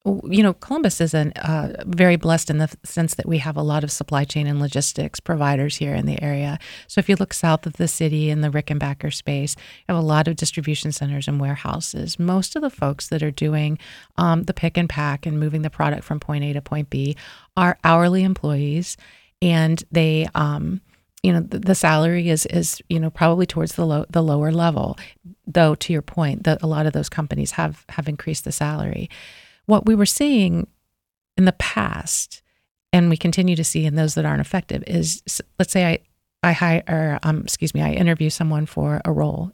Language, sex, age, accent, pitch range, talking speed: English, female, 30-49, American, 150-175 Hz, 210 wpm